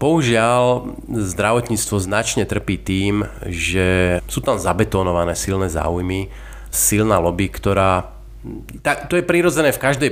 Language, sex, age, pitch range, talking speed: Slovak, male, 30-49, 95-115 Hz, 120 wpm